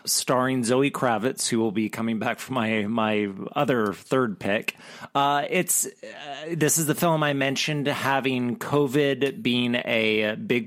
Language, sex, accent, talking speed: English, male, American, 155 wpm